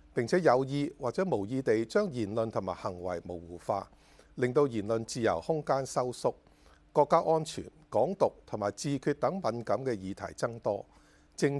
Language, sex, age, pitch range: Chinese, male, 50-69, 100-150 Hz